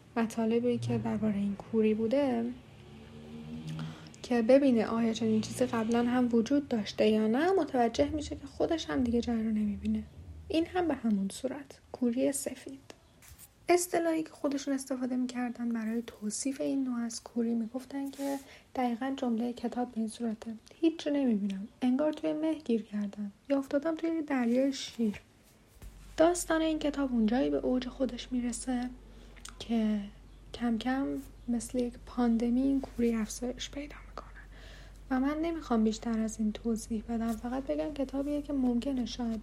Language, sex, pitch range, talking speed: Persian, female, 225-270 Hz, 145 wpm